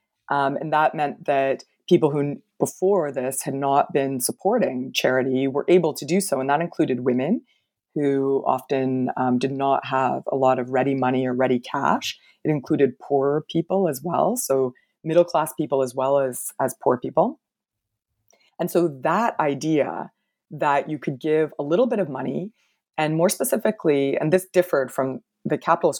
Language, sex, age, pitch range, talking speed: English, female, 30-49, 135-170 Hz, 175 wpm